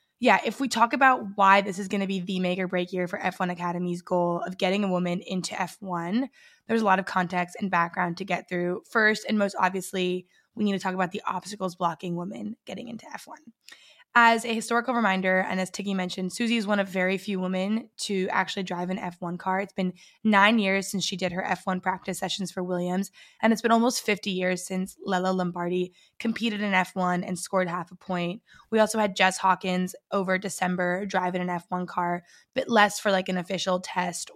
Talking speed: 215 wpm